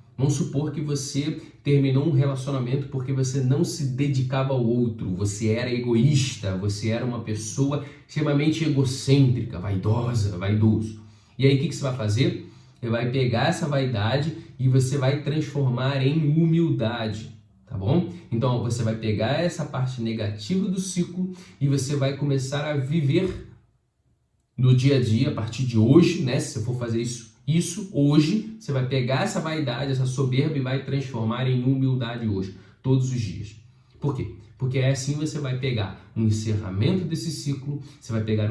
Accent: Brazilian